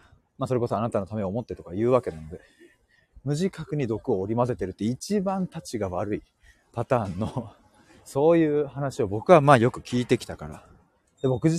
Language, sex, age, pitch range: Japanese, male, 30-49, 105-140 Hz